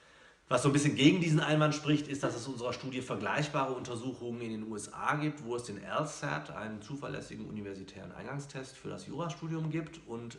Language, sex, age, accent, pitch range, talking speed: German, male, 40-59, German, 110-150 Hz, 190 wpm